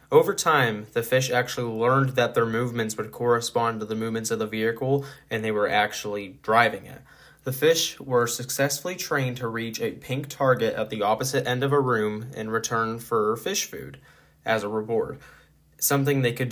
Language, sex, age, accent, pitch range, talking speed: English, male, 10-29, American, 110-125 Hz, 185 wpm